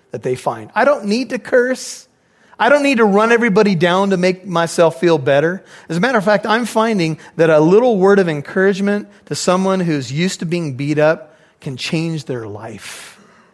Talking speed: 200 wpm